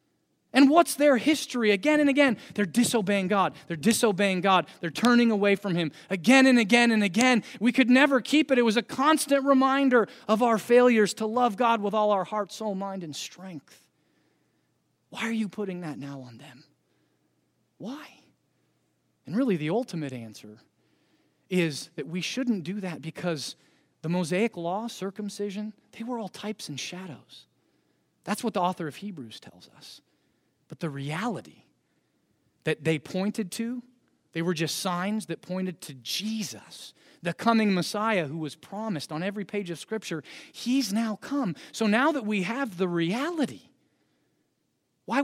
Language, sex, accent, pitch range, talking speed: English, male, American, 175-235 Hz, 165 wpm